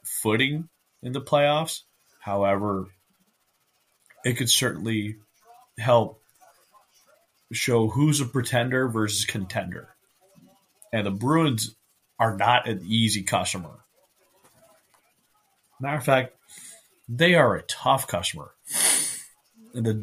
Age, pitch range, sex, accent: 30-49, 105-135 Hz, male, American